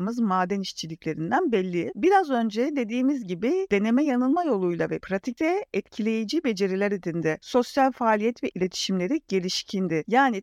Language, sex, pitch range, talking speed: Turkish, female, 185-250 Hz, 120 wpm